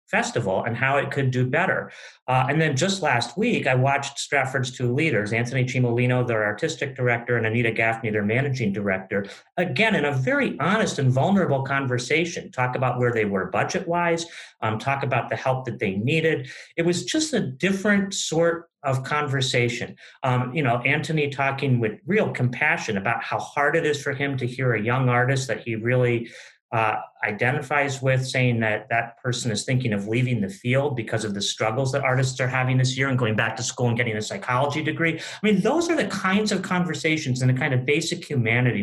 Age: 40-59